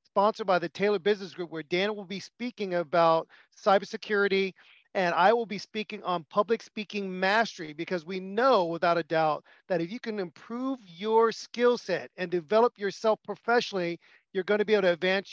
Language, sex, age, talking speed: English, male, 40-59, 185 wpm